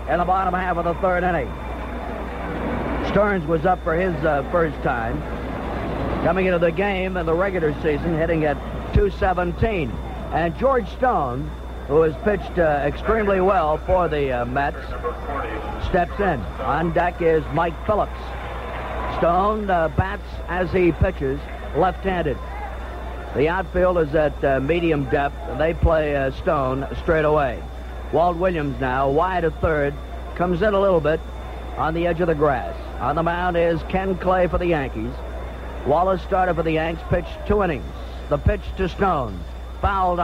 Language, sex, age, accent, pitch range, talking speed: English, male, 60-79, American, 115-180 Hz, 160 wpm